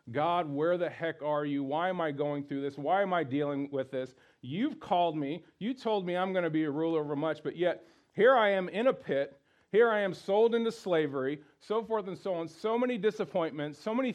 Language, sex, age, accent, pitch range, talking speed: English, male, 40-59, American, 150-200 Hz, 240 wpm